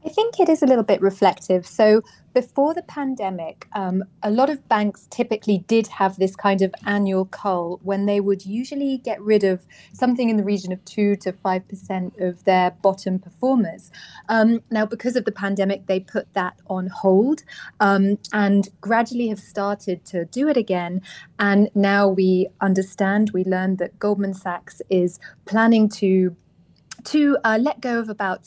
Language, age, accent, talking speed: English, 30-49, British, 175 wpm